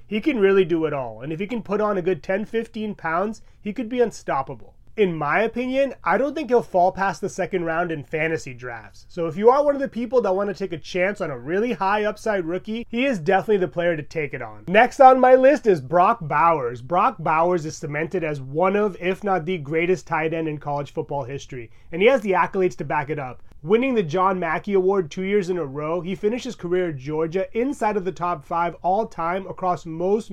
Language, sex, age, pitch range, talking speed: English, male, 30-49, 160-210 Hz, 240 wpm